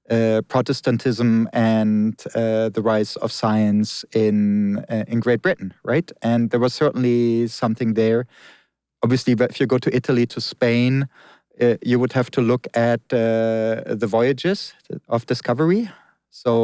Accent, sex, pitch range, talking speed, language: German, male, 115-130 Hz, 150 wpm, English